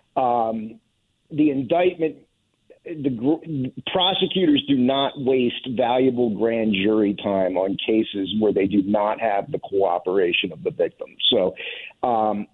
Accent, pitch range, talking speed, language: American, 110-140 Hz, 130 wpm, English